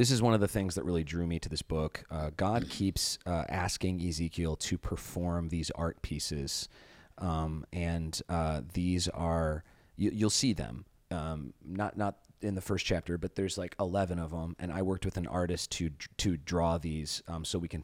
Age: 30-49